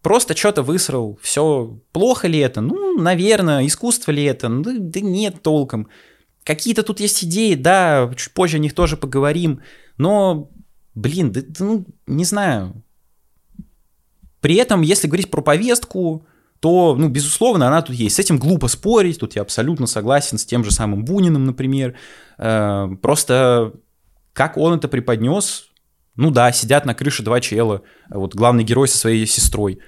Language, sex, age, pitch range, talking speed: Russian, male, 20-39, 120-165 Hz, 155 wpm